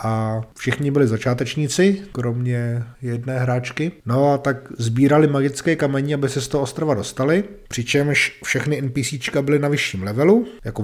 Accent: native